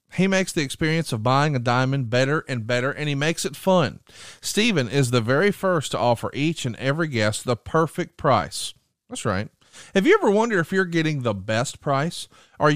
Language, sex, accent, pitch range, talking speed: English, male, American, 130-195 Hz, 200 wpm